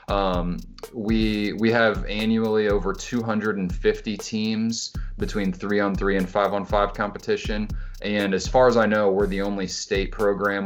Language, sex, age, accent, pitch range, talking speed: English, male, 20-39, American, 90-105 Hz, 135 wpm